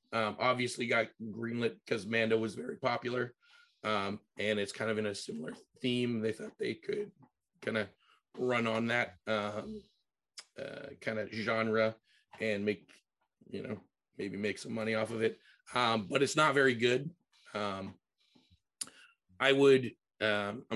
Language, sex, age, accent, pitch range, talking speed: English, male, 30-49, American, 110-135 Hz, 150 wpm